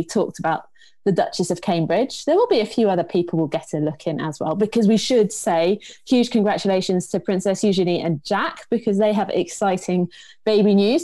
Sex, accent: female, British